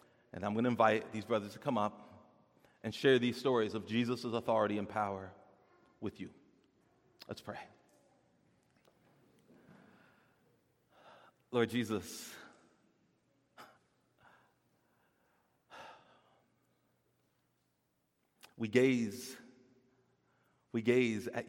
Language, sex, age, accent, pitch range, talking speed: English, male, 40-59, American, 110-130 Hz, 85 wpm